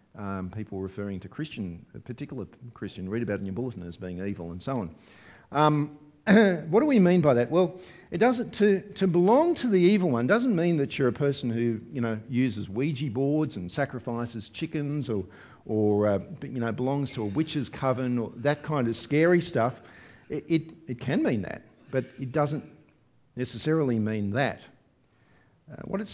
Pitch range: 115-165 Hz